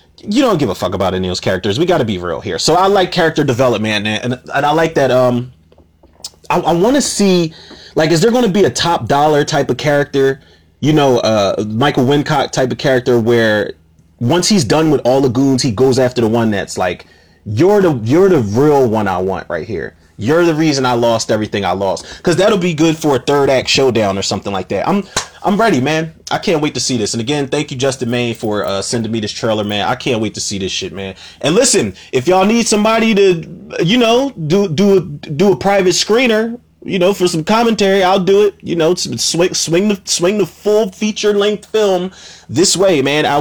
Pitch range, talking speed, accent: 115-180 Hz, 235 wpm, American